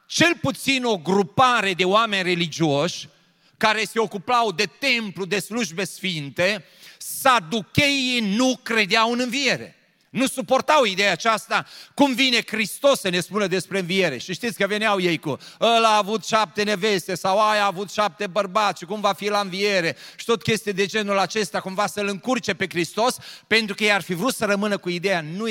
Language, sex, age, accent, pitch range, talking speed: Romanian, male, 30-49, native, 180-220 Hz, 180 wpm